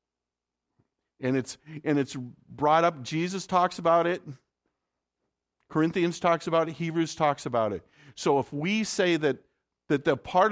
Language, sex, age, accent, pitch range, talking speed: English, male, 50-69, American, 130-175 Hz, 150 wpm